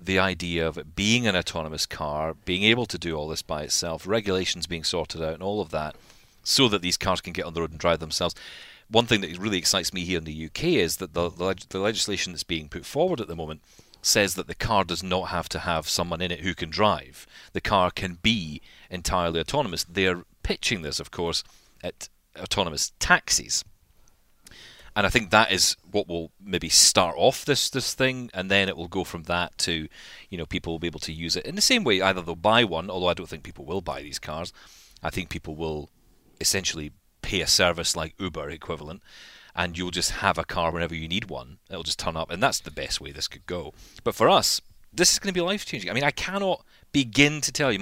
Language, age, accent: English, 40-59, British